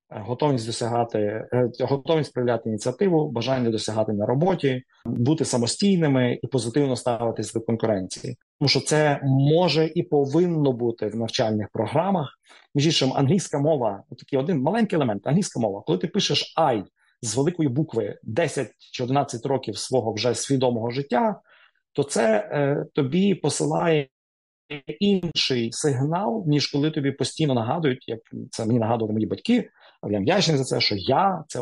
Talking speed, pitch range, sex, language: 145 wpm, 120-155 Hz, male, Ukrainian